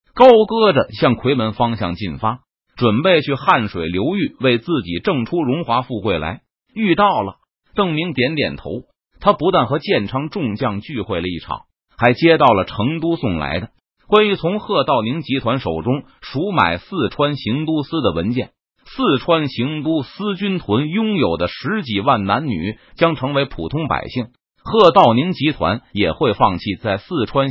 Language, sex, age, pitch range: Chinese, male, 30-49, 105-165 Hz